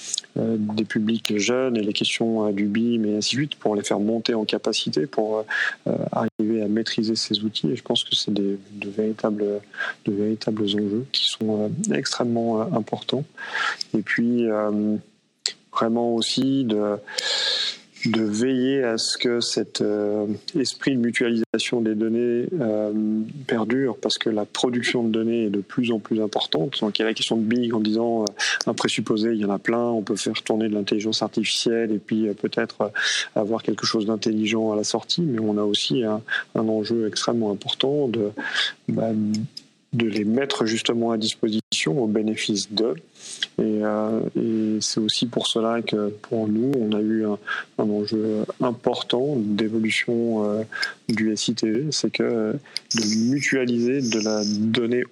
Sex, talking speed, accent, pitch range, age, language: male, 170 wpm, French, 105-115 Hz, 30-49, French